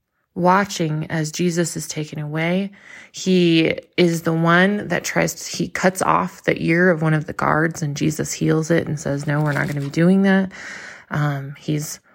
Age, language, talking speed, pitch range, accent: 20-39, English, 195 wpm, 155-180 Hz, American